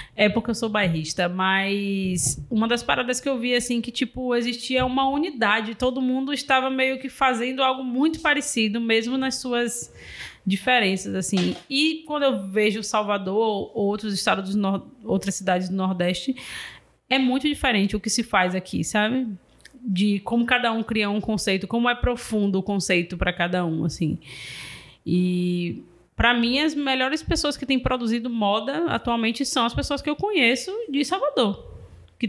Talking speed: 170 wpm